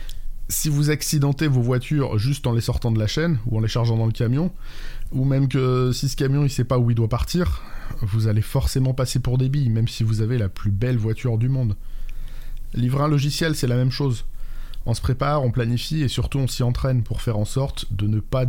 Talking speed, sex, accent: 235 wpm, male, French